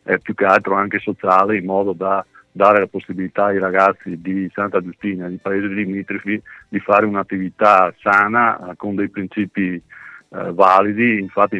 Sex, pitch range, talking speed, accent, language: male, 95-105 Hz, 160 wpm, native, Italian